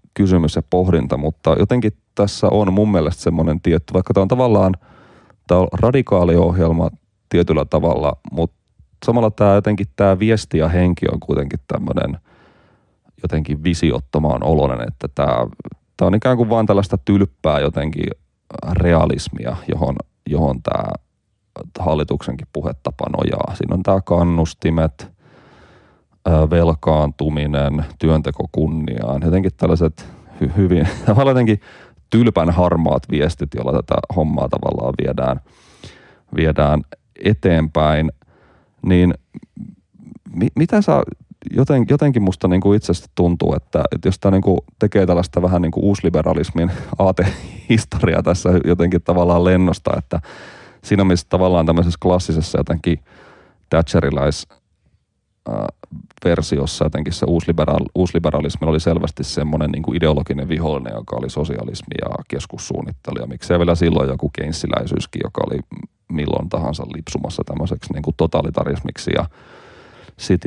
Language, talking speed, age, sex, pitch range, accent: Finnish, 120 wpm, 30-49, male, 80-95 Hz, native